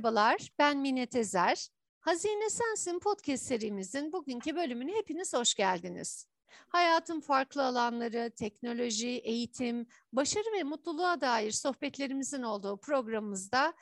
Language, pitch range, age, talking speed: Turkish, 215-280 Hz, 60-79, 110 wpm